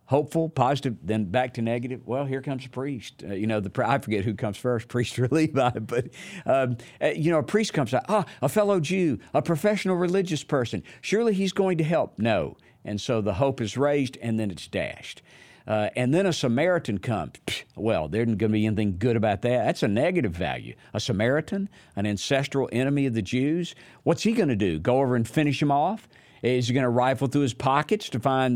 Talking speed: 215 wpm